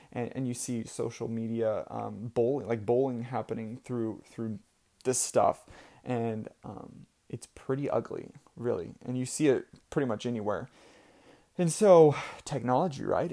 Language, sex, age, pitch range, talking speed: English, male, 20-39, 115-135 Hz, 145 wpm